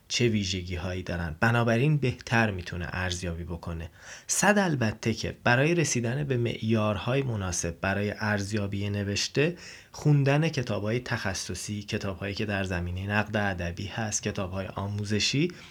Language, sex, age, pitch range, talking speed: Persian, male, 30-49, 100-125 Hz, 120 wpm